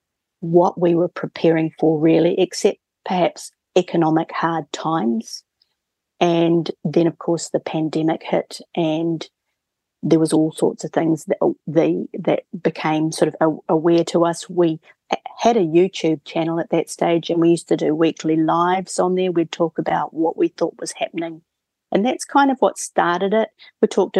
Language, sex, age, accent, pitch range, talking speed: English, female, 40-59, Australian, 165-195 Hz, 170 wpm